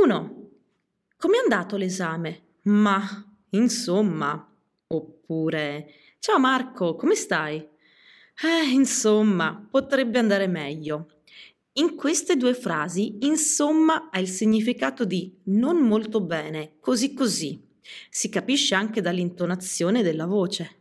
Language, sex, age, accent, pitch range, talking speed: Italian, female, 30-49, native, 170-245 Hz, 105 wpm